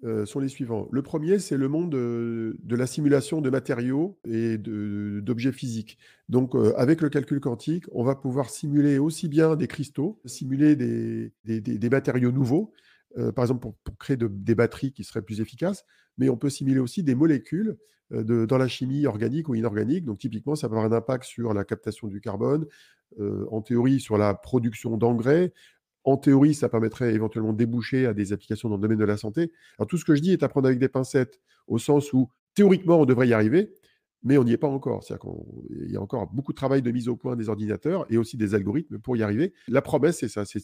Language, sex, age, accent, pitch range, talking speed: French, male, 40-59, French, 115-145 Hz, 230 wpm